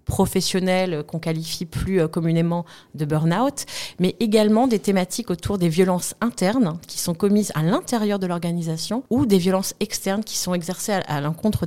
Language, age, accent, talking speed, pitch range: French, 30-49, French, 160 wpm, 165-200 Hz